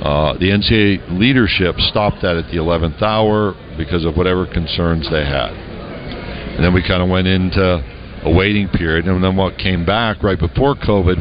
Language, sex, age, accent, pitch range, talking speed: English, male, 60-79, American, 85-105 Hz, 180 wpm